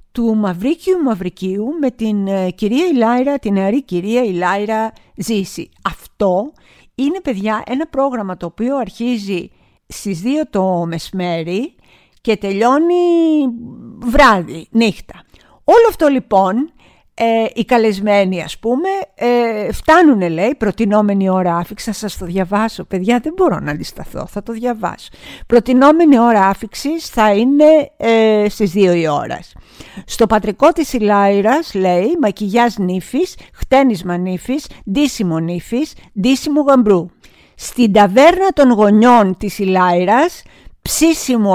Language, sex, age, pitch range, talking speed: Greek, female, 50-69, 195-275 Hz, 120 wpm